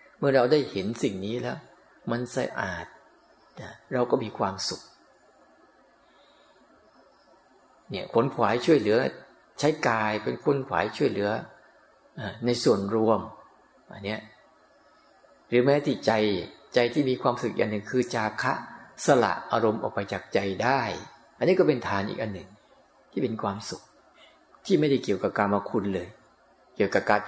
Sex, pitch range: male, 100-125 Hz